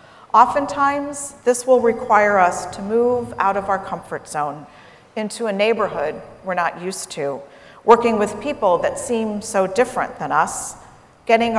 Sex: female